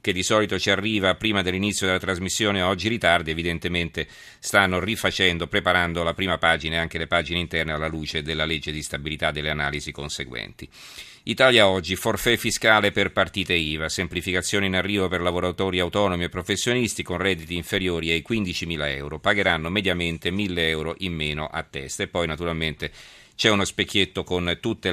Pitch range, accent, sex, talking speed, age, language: 85-100 Hz, native, male, 170 wpm, 40-59, Italian